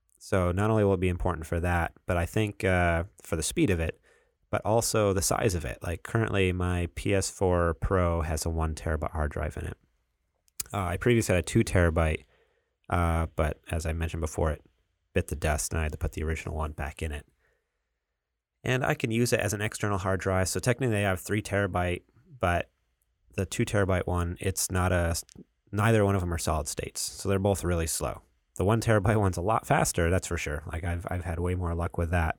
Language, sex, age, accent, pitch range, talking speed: English, male, 30-49, American, 80-100 Hz, 220 wpm